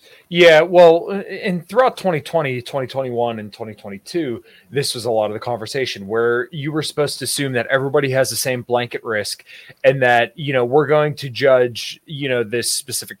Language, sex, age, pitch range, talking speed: English, male, 20-39, 110-145 Hz, 180 wpm